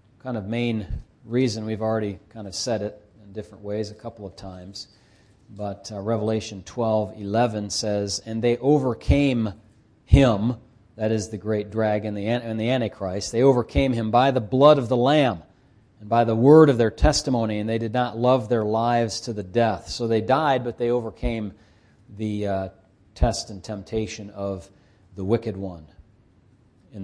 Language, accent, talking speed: English, American, 170 wpm